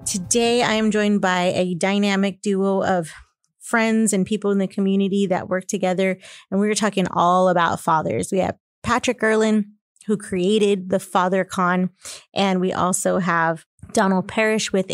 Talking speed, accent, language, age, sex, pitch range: 160 wpm, American, English, 30-49, female, 180-210 Hz